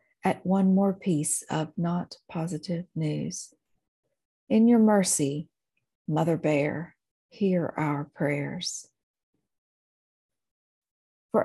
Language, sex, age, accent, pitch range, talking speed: English, female, 50-69, American, 160-195 Hz, 90 wpm